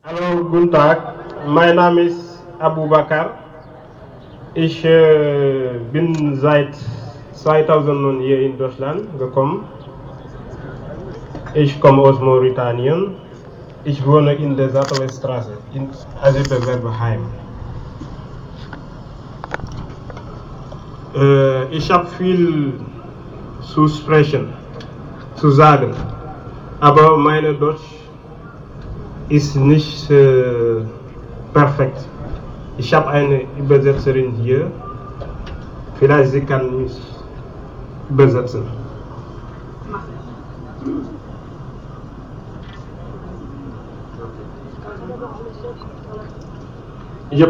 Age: 30-49